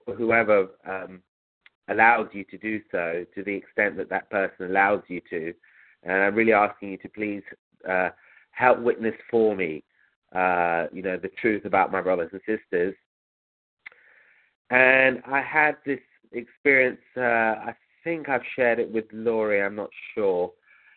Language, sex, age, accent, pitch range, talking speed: English, male, 30-49, British, 100-120 Hz, 155 wpm